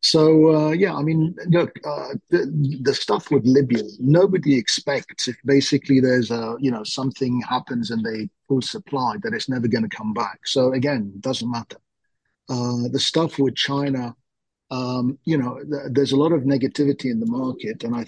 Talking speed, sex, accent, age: 185 wpm, male, British, 40-59